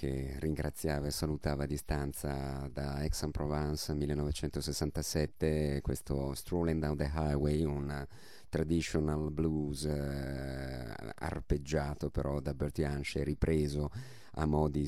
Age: 30-49